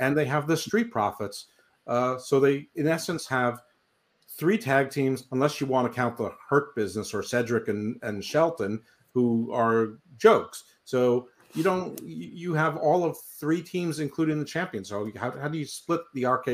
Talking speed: 185 wpm